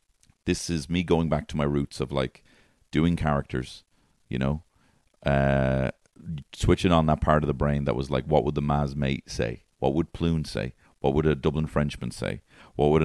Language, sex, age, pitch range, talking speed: English, male, 40-59, 65-85 Hz, 200 wpm